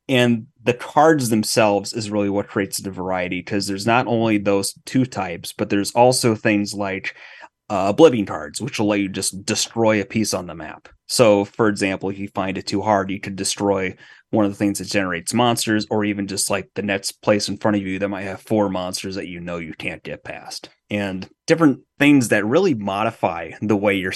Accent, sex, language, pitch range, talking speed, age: American, male, English, 100-115 Hz, 215 wpm, 30-49